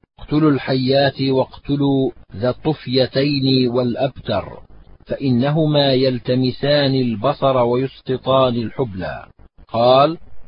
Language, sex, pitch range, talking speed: Arabic, male, 115-130 Hz, 70 wpm